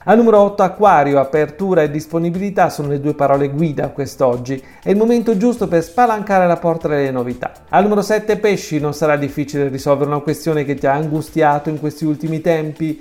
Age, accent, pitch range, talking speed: 40-59, native, 150-195 Hz, 185 wpm